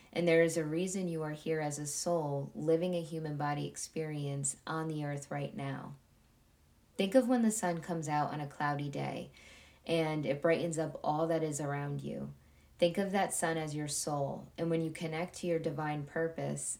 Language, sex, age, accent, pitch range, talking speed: English, female, 20-39, American, 145-175 Hz, 200 wpm